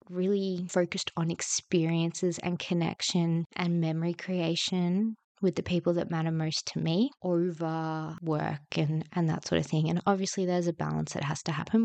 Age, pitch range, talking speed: 20-39, 155-175 Hz, 170 wpm